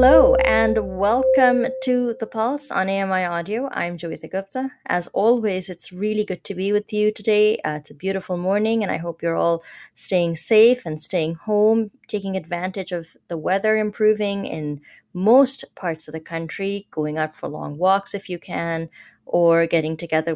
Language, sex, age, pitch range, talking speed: English, female, 20-39, 165-215 Hz, 175 wpm